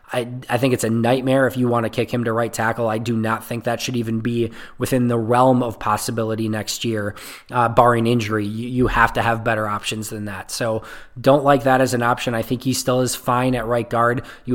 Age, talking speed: 20-39, 245 wpm